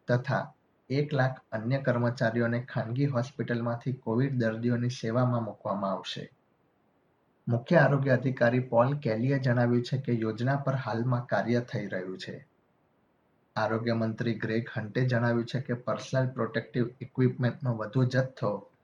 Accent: native